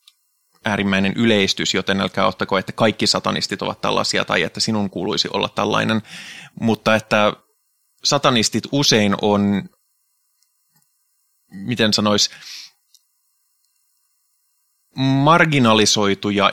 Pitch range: 95-110 Hz